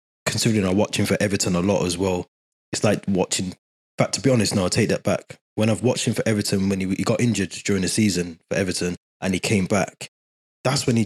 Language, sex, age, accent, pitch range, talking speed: English, male, 20-39, British, 95-115 Hz, 245 wpm